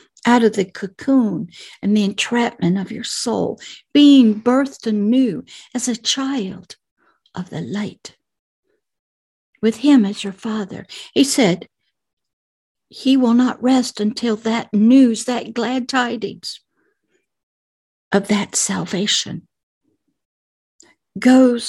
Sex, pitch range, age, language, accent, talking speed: female, 205-270 Hz, 60-79, English, American, 110 wpm